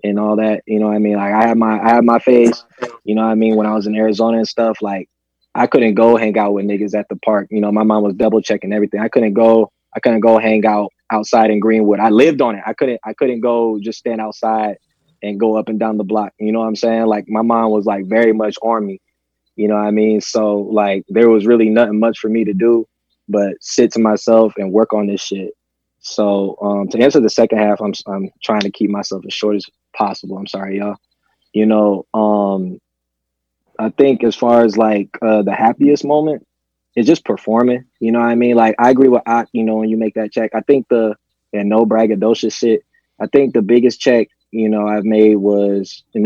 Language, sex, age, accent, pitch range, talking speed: English, male, 20-39, American, 105-115 Hz, 245 wpm